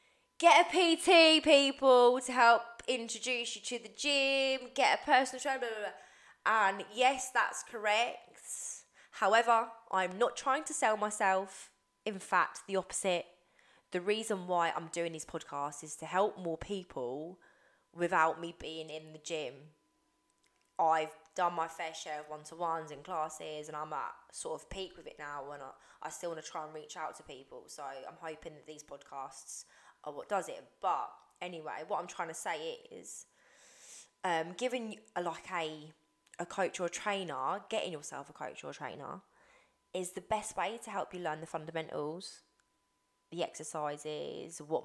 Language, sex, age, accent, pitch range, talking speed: English, female, 20-39, British, 160-235 Hz, 175 wpm